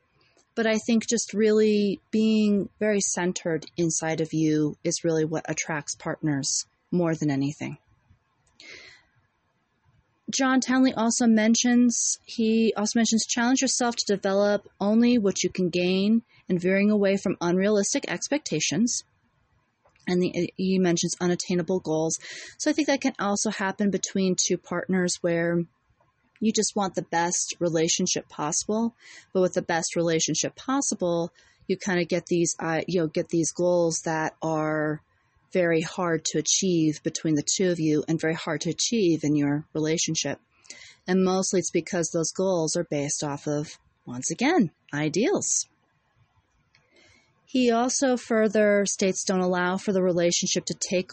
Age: 30-49